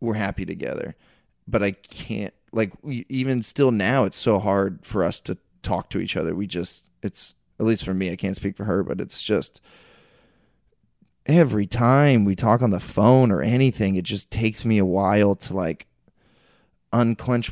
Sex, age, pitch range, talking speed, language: male, 20-39, 95-115 Hz, 185 wpm, English